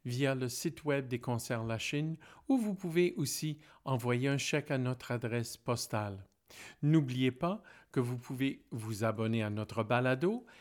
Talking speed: 165 wpm